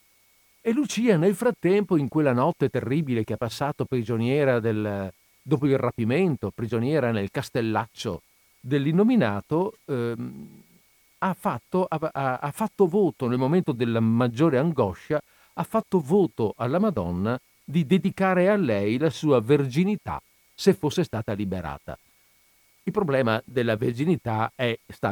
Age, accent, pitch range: 50-69, native, 110-150 Hz